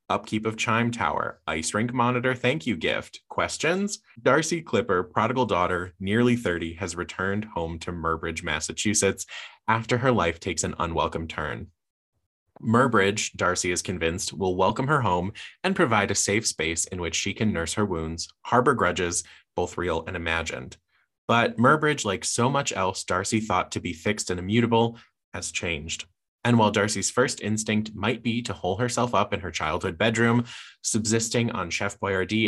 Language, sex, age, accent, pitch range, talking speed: English, male, 20-39, American, 90-115 Hz, 165 wpm